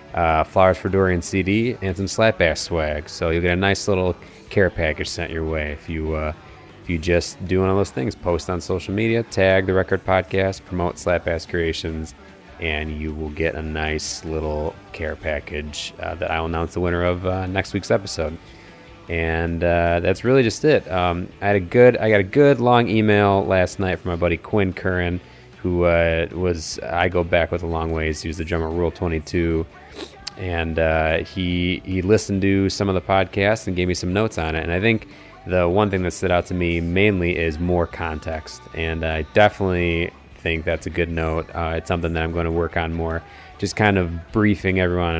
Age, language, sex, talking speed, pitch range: 30-49, English, male, 215 wpm, 80-95 Hz